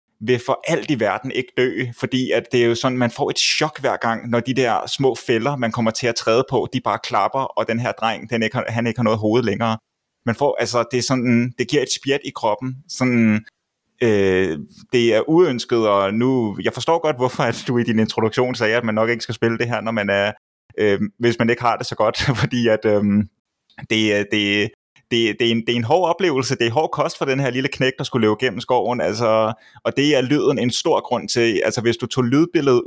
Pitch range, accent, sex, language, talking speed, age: 110-125 Hz, native, male, Danish, 250 wpm, 20-39